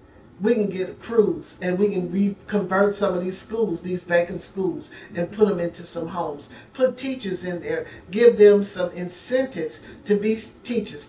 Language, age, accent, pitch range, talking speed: English, 50-69, American, 175-215 Hz, 175 wpm